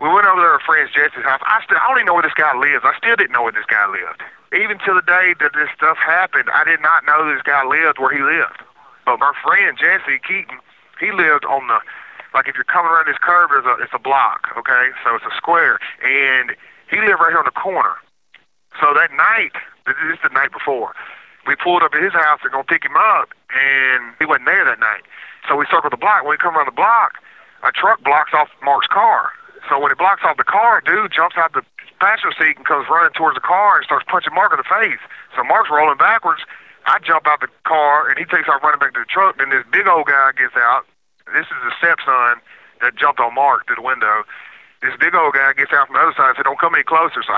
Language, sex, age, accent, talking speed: English, male, 30-49, American, 255 wpm